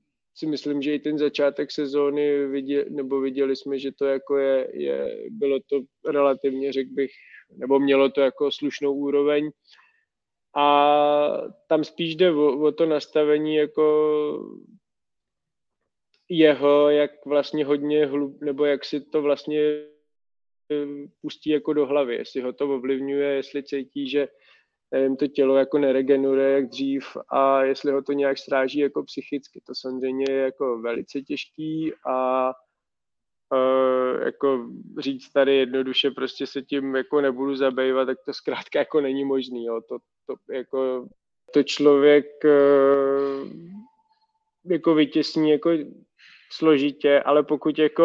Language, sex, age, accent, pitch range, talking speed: Czech, male, 20-39, native, 135-150 Hz, 135 wpm